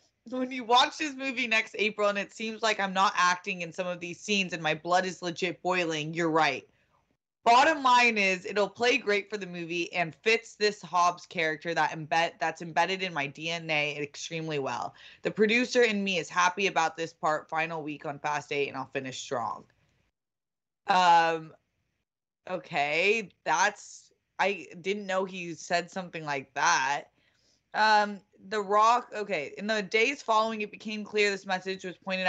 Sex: female